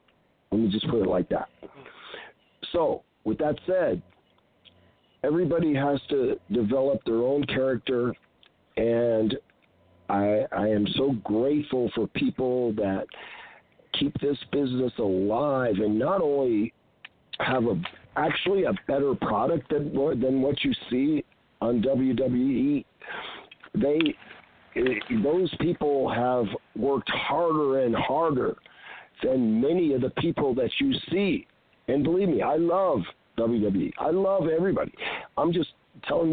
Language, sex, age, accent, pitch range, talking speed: English, male, 50-69, American, 115-165 Hz, 125 wpm